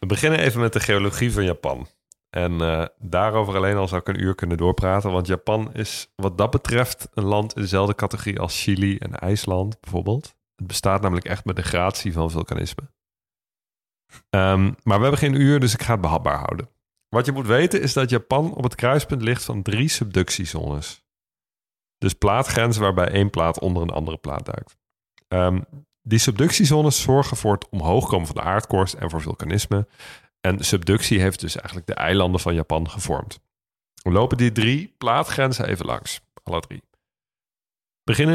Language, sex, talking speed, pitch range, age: Dutch, male, 180 wpm, 90-120 Hz, 40-59